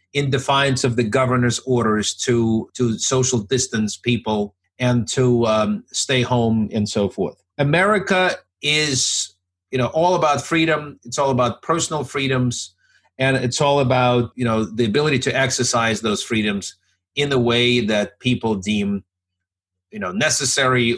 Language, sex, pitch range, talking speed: English, male, 110-135 Hz, 150 wpm